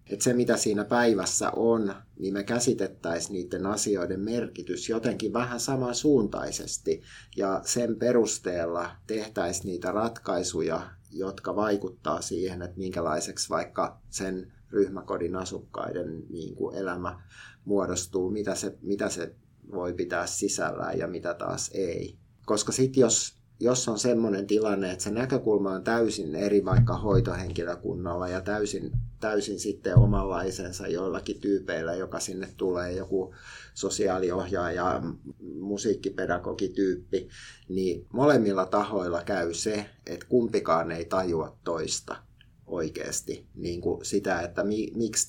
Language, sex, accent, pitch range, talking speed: Finnish, male, native, 95-115 Hz, 115 wpm